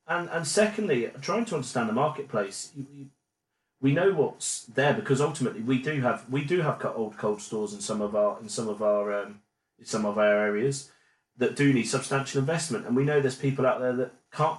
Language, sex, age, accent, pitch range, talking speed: English, male, 30-49, British, 110-140 Hz, 220 wpm